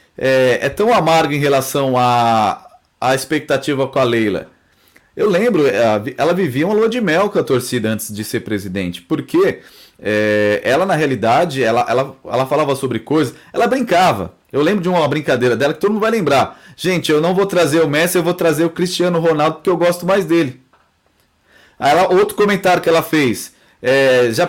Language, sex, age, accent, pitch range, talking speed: Portuguese, male, 20-39, Brazilian, 130-190 Hz, 180 wpm